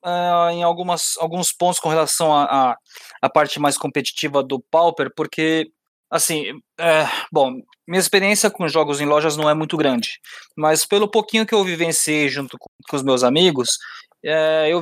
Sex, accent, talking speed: male, Brazilian, 180 wpm